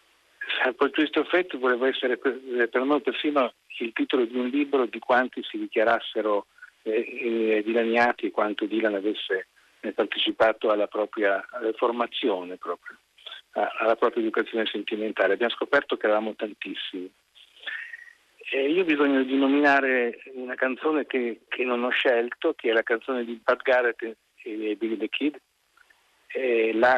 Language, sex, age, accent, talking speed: Italian, male, 50-69, native, 145 wpm